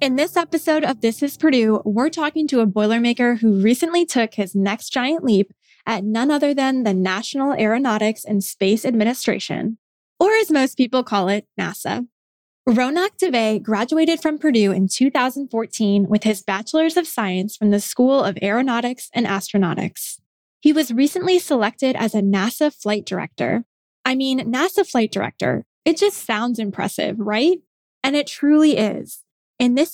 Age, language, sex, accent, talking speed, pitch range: 10-29, English, female, American, 160 wpm, 210-270 Hz